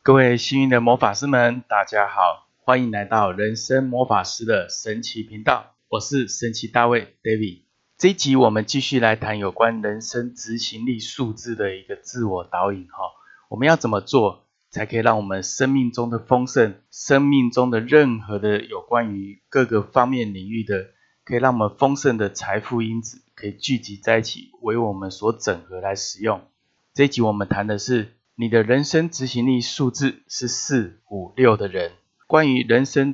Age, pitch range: 20-39, 105-130 Hz